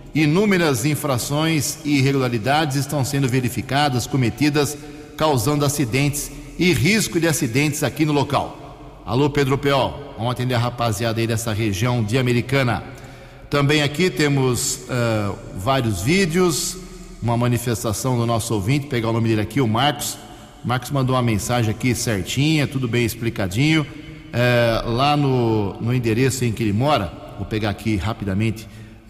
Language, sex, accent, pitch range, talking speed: Portuguese, male, Brazilian, 120-150 Hz, 140 wpm